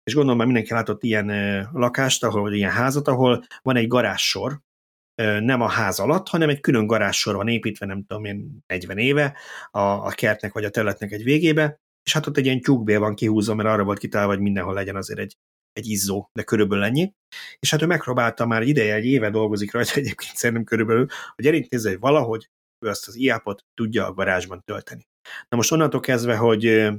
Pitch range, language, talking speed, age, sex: 105-125 Hz, Hungarian, 200 wpm, 30-49, male